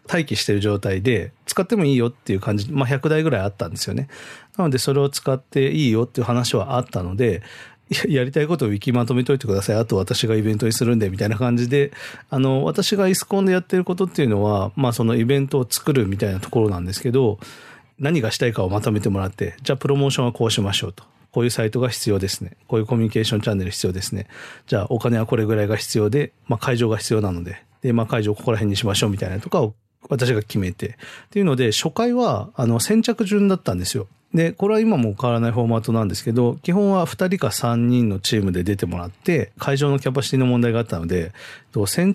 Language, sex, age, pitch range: Japanese, male, 40-59, 105-140 Hz